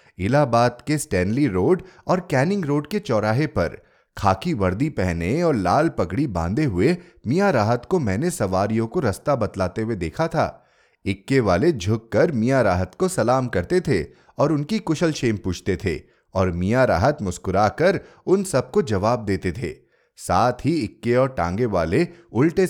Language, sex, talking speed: Hindi, male, 160 wpm